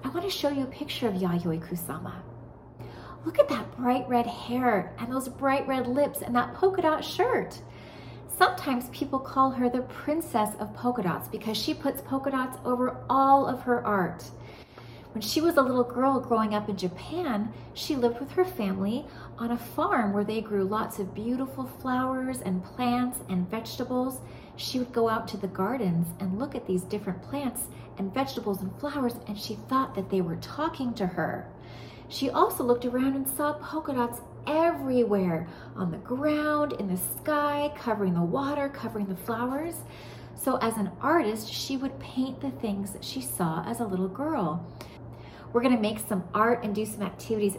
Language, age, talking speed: English, 30-49, 185 wpm